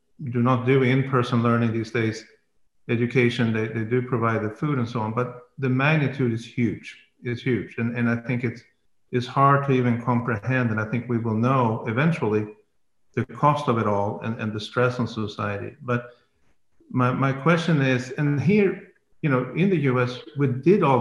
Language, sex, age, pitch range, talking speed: Swedish, male, 50-69, 115-135 Hz, 190 wpm